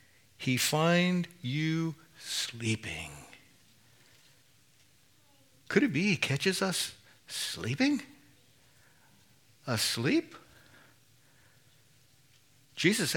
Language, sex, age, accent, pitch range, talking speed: English, male, 60-79, American, 125-180 Hz, 60 wpm